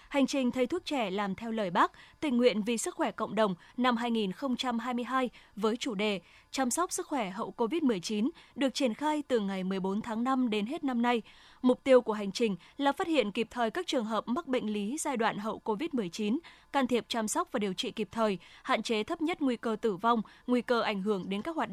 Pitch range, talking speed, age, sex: 215-270 Hz, 230 wpm, 20-39, female